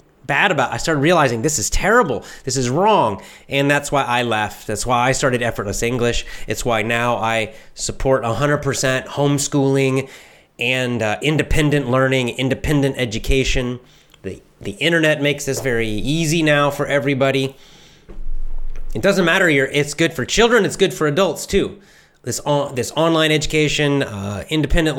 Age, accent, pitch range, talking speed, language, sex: 30-49, American, 125-160 Hz, 160 wpm, English, male